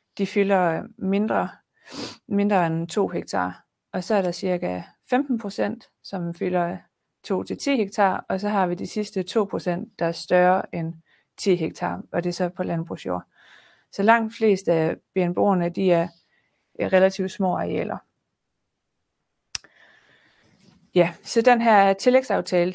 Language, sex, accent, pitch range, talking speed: Danish, female, native, 175-205 Hz, 140 wpm